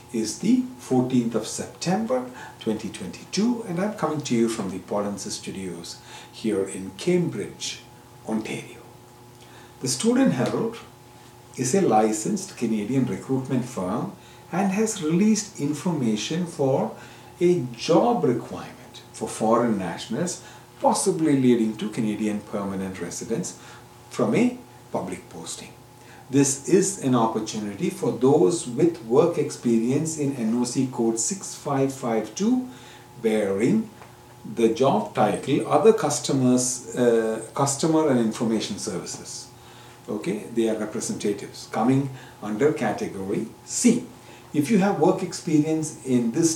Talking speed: 115 wpm